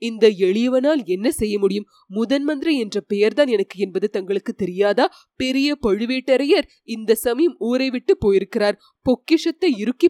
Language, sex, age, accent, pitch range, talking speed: Tamil, female, 30-49, native, 220-310 Hz, 130 wpm